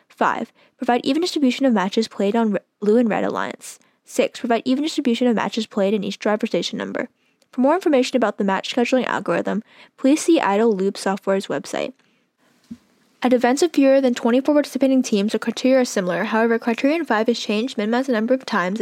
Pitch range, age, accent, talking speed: 210-260 Hz, 10-29, American, 200 wpm